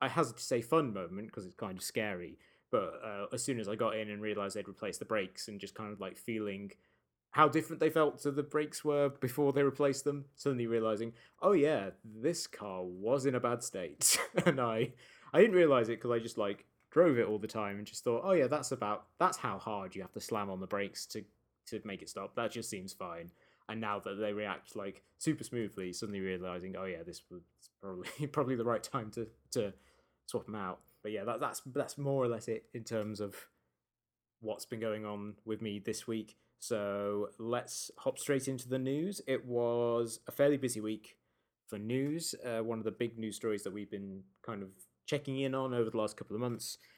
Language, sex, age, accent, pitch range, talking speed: English, male, 20-39, British, 105-130 Hz, 220 wpm